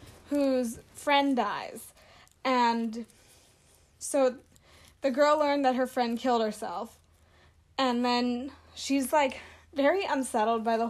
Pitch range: 235-285 Hz